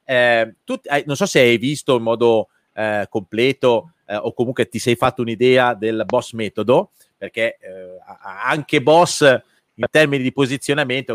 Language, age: Italian, 30-49